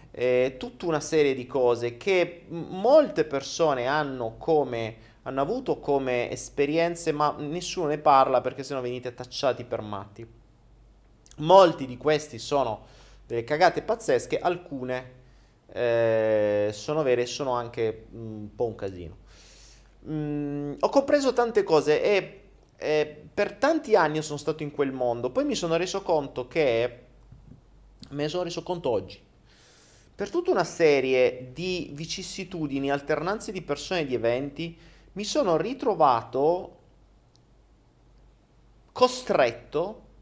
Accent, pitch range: native, 125-180 Hz